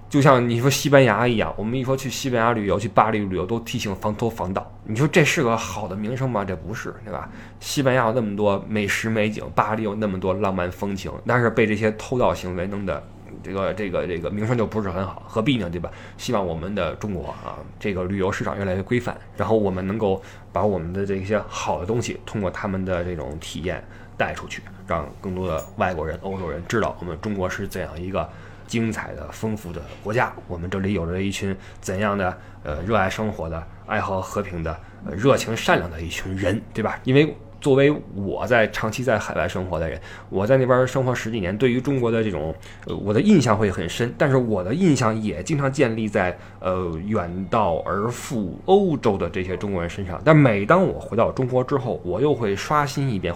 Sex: male